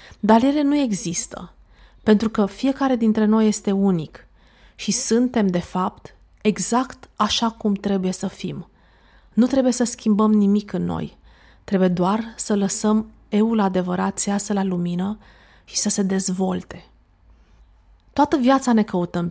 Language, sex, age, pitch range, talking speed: Romanian, female, 30-49, 180-240 Hz, 145 wpm